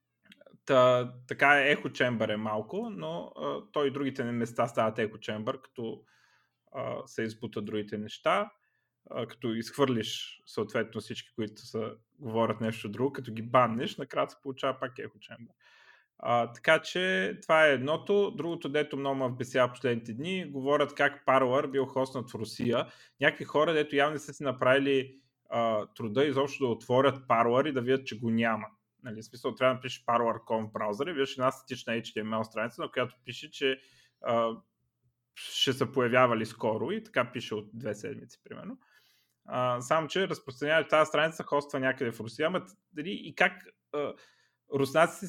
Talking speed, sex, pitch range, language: 155 wpm, male, 115-140 Hz, Bulgarian